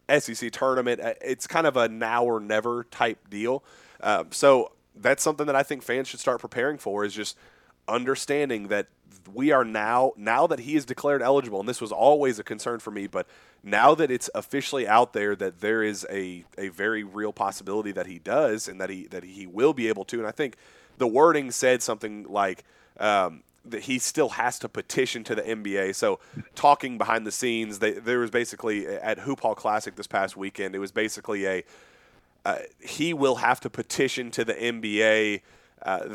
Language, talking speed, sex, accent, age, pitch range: English, 200 wpm, male, American, 30-49, 105-125 Hz